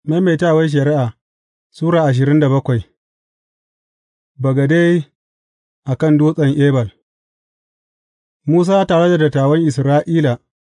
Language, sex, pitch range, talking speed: English, male, 130-160 Hz, 80 wpm